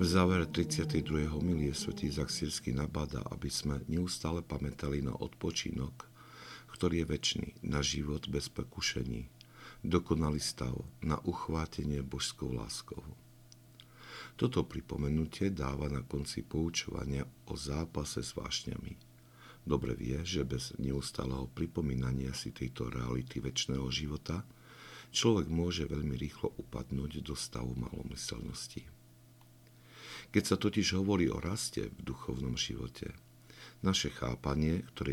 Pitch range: 65-90 Hz